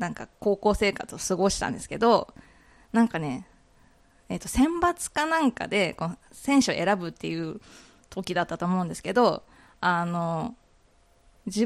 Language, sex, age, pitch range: Japanese, female, 20-39, 175-260 Hz